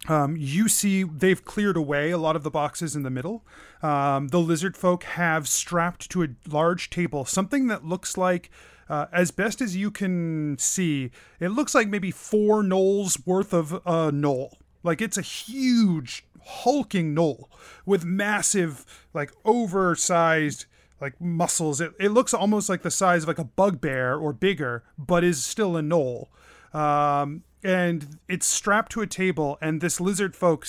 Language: English